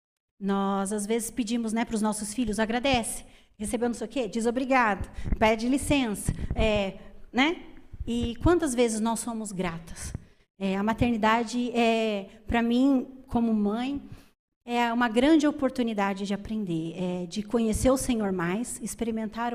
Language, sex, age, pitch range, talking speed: Portuguese, female, 30-49, 215-265 Hz, 140 wpm